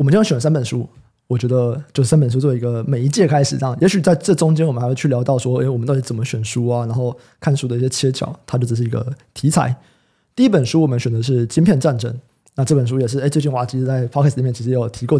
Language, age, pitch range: Chinese, 20-39, 120-155 Hz